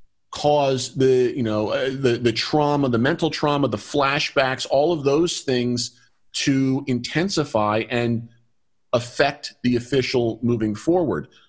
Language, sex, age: English, male, 40-59